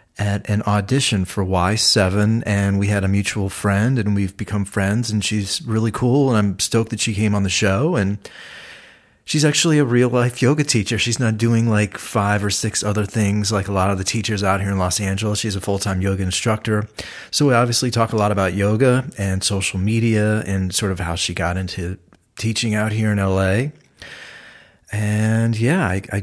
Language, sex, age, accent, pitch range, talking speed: English, male, 30-49, American, 100-115 Hz, 205 wpm